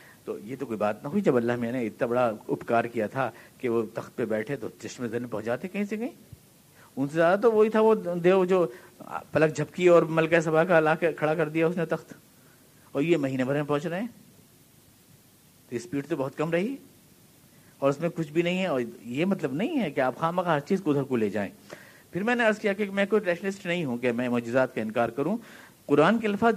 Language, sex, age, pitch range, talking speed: Urdu, male, 50-69, 135-190 Hz, 240 wpm